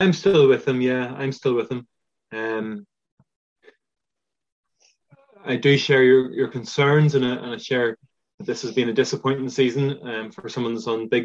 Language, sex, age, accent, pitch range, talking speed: English, male, 20-39, Irish, 115-130 Hz, 180 wpm